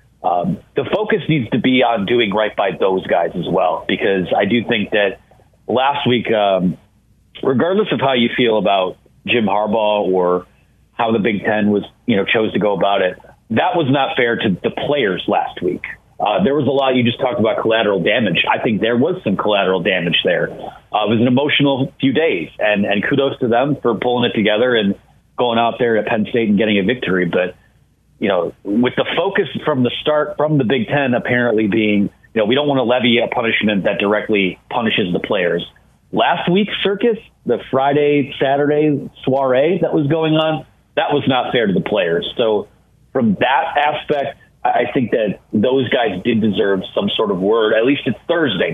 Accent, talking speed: American, 200 wpm